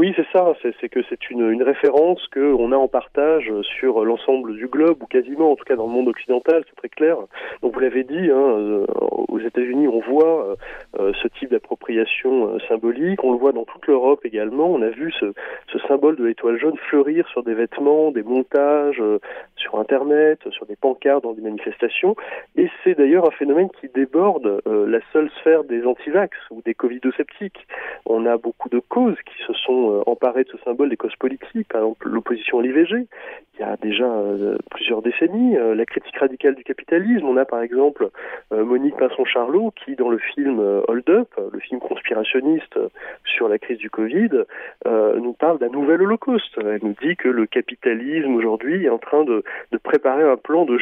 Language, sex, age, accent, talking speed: Italian, male, 30-49, French, 195 wpm